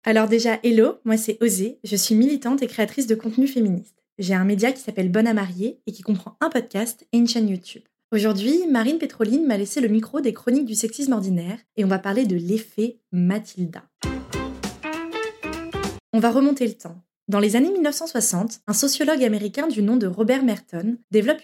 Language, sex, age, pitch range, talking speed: French, female, 20-39, 200-255 Hz, 190 wpm